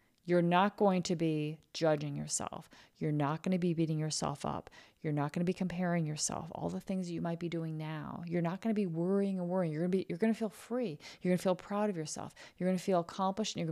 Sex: female